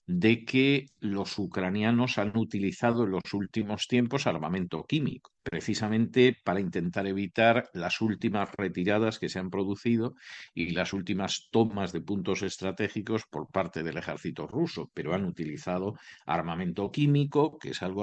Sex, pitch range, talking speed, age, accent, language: male, 95-125 Hz, 145 wpm, 50-69, Spanish, English